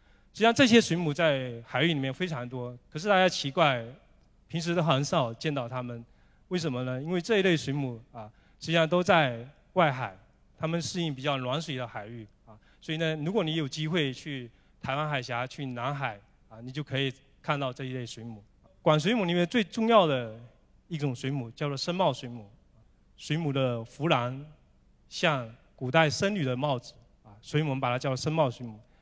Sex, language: male, Chinese